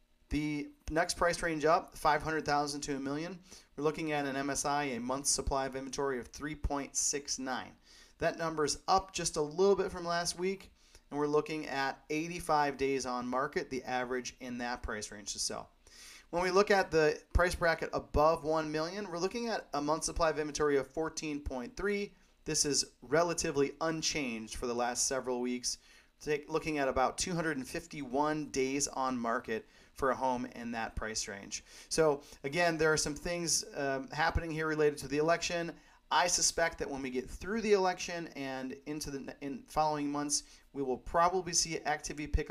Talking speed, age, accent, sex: 175 wpm, 30-49, American, male